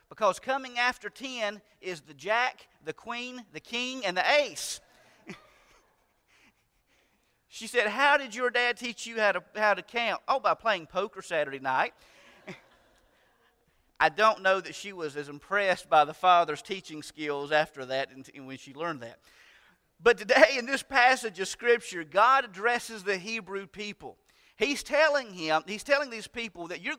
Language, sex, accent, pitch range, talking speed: English, male, American, 180-250 Hz, 160 wpm